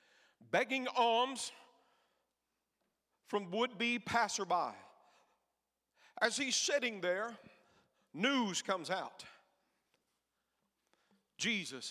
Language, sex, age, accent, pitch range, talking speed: English, male, 50-69, American, 185-250 Hz, 65 wpm